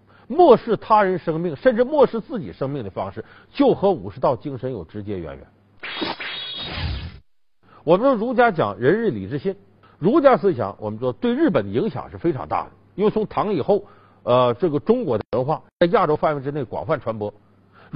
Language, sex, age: Chinese, male, 50-69